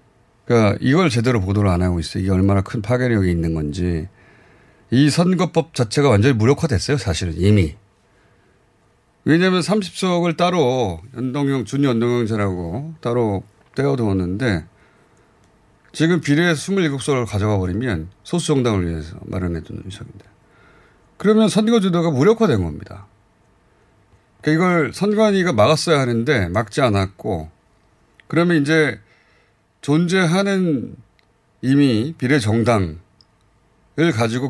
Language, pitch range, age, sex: Korean, 100-150 Hz, 30-49, male